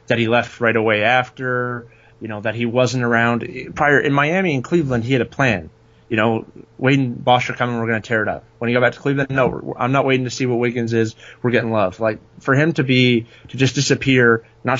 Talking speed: 240 wpm